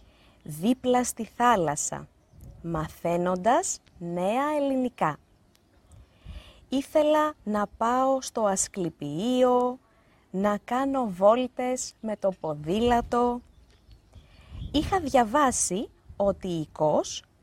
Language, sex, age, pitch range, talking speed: Greek, female, 30-49, 155-250 Hz, 75 wpm